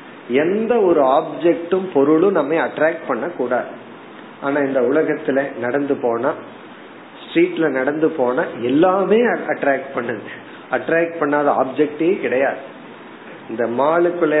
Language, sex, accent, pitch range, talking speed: Tamil, male, native, 140-190 Hz, 90 wpm